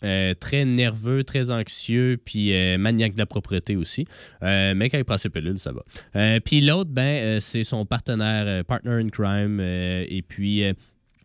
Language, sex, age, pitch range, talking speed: French, male, 20-39, 100-125 Hz, 200 wpm